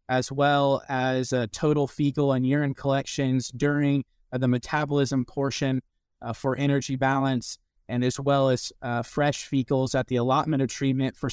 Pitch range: 130-145 Hz